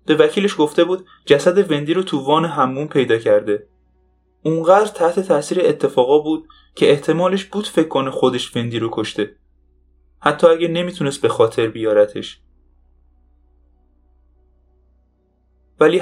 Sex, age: male, 10-29